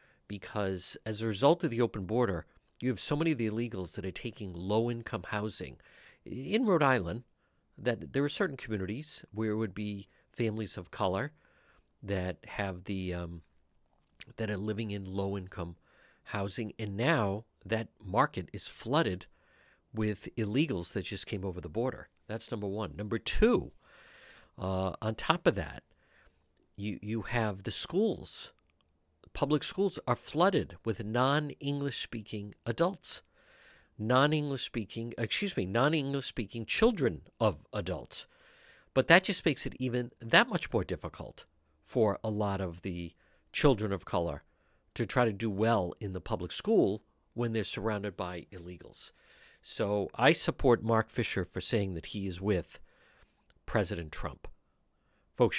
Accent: American